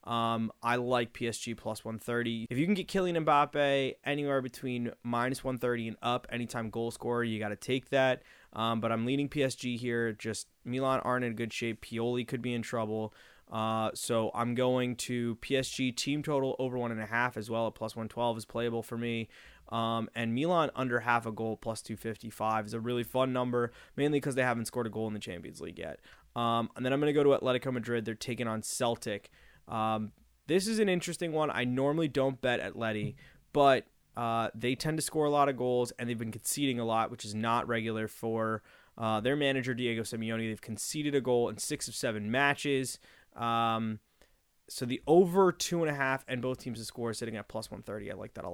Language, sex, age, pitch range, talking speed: English, male, 20-39, 115-130 Hz, 220 wpm